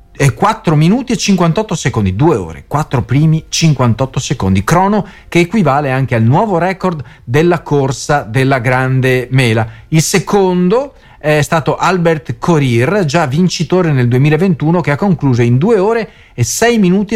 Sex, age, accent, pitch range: male, 40-59, native, 125-180 Hz